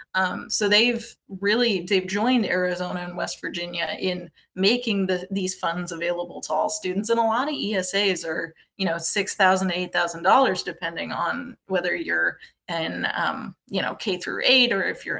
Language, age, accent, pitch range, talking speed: English, 20-39, American, 180-220 Hz, 185 wpm